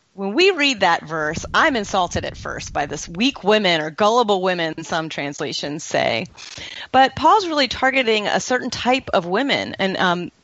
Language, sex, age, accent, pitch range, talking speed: English, female, 30-49, American, 185-260 Hz, 170 wpm